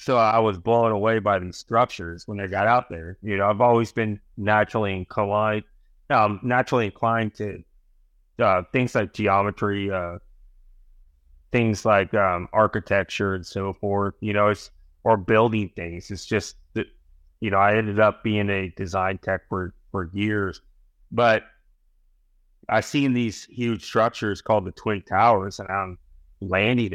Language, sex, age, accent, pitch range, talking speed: English, male, 30-49, American, 85-115 Hz, 155 wpm